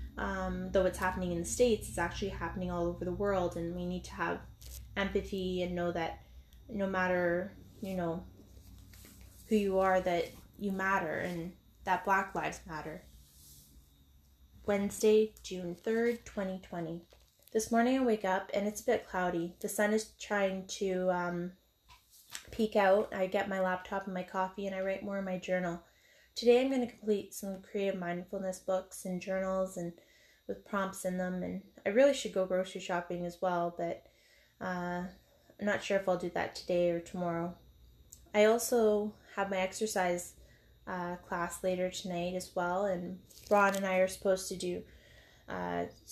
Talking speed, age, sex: 170 wpm, 20-39, female